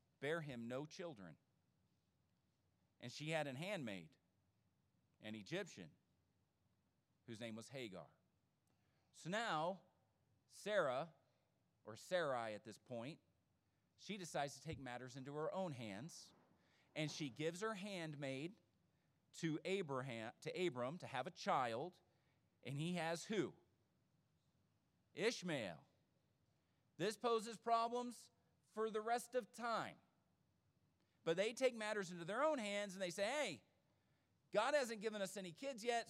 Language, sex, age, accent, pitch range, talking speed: English, male, 40-59, American, 140-220 Hz, 130 wpm